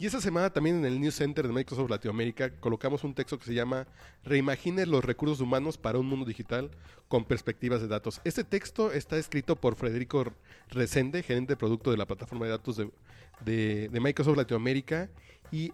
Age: 40-59